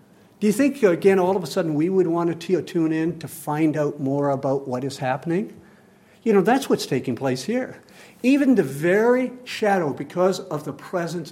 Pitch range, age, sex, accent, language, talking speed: 160-240 Hz, 60-79, male, American, English, 195 wpm